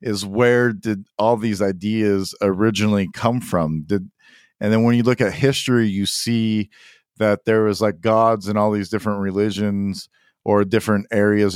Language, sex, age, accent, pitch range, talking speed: English, male, 50-69, American, 95-110 Hz, 165 wpm